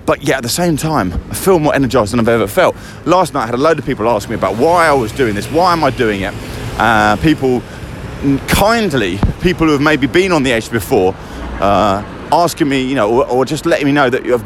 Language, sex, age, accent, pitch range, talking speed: English, male, 30-49, British, 110-150 Hz, 250 wpm